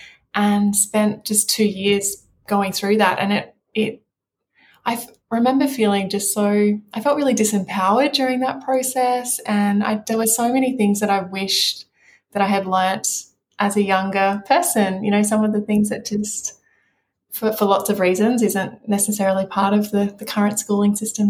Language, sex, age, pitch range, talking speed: English, female, 20-39, 195-225 Hz, 180 wpm